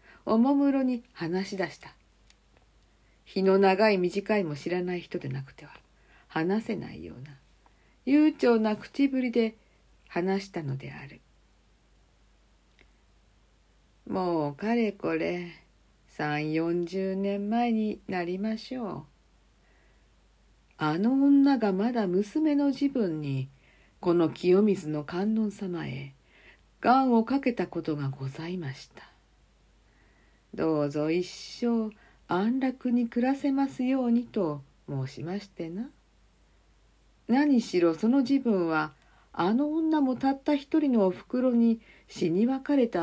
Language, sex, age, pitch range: Japanese, female, 50-69, 155-240 Hz